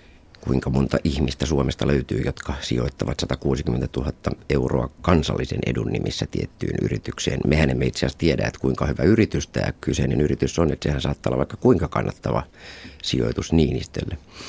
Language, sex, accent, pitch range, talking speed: Finnish, male, native, 70-80 Hz, 155 wpm